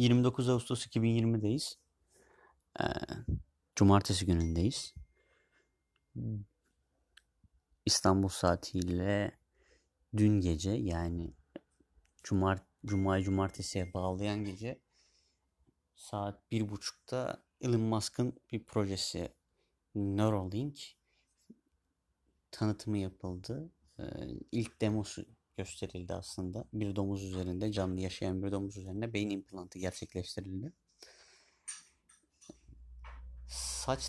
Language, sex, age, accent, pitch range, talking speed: Turkish, male, 30-49, native, 90-115 Hz, 70 wpm